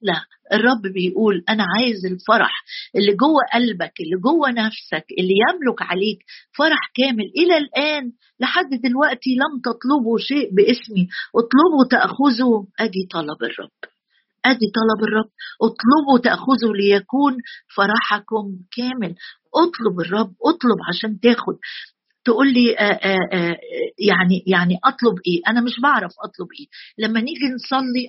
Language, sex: Arabic, female